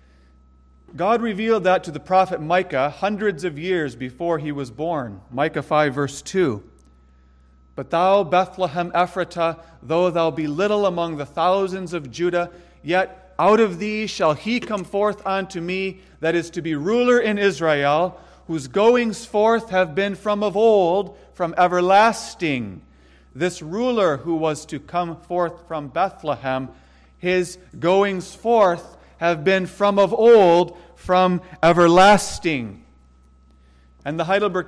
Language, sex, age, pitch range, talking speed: English, male, 40-59, 140-190 Hz, 140 wpm